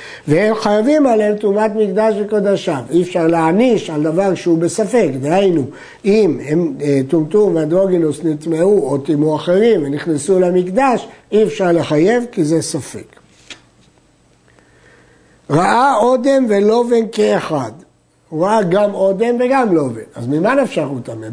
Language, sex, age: Hebrew, male, 60-79